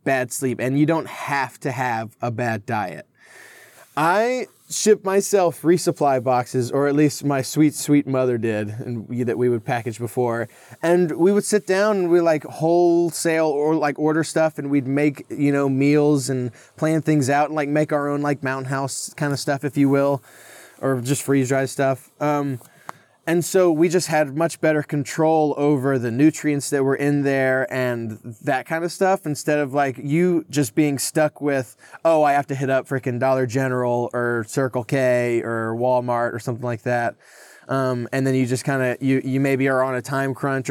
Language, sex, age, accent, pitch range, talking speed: English, male, 20-39, American, 125-155 Hz, 200 wpm